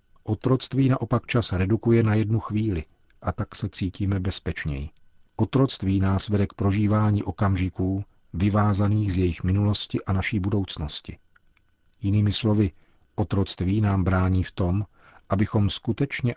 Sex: male